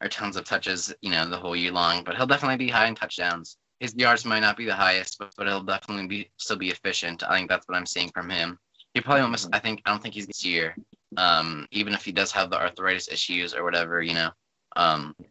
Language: English